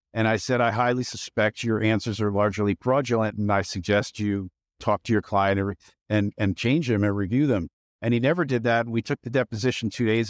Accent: American